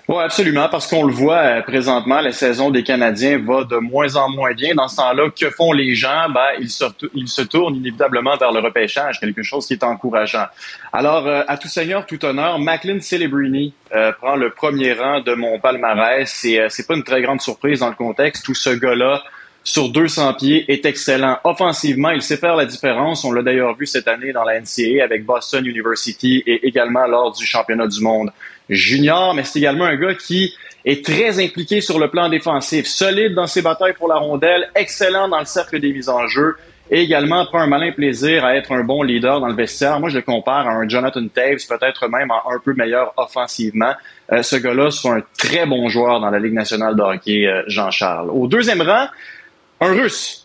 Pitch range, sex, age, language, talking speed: 125-165 Hz, male, 20-39, French, 215 wpm